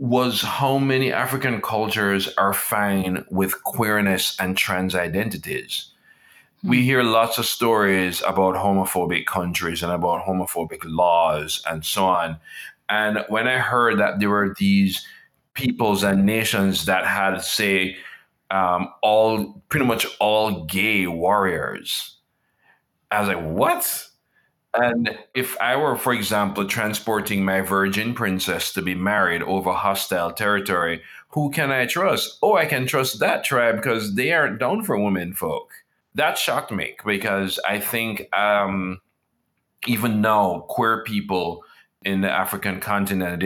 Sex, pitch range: male, 95-110 Hz